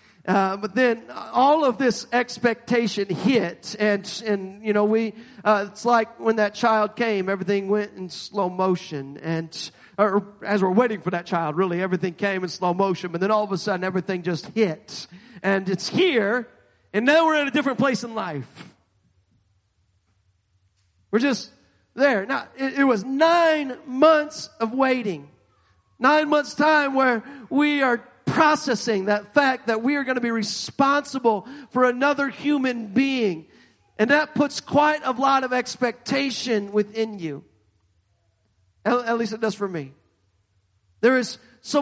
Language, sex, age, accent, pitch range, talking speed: English, male, 40-59, American, 190-270 Hz, 165 wpm